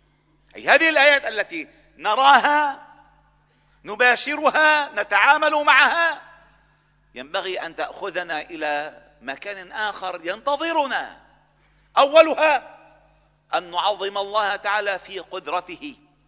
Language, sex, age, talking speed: Arabic, male, 50-69, 80 wpm